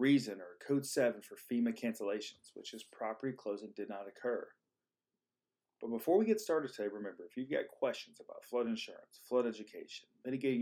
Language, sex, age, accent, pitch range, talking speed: English, male, 40-59, American, 110-140 Hz, 175 wpm